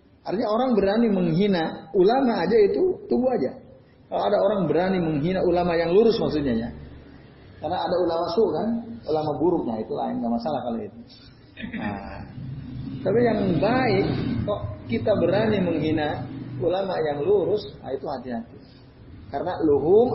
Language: Indonesian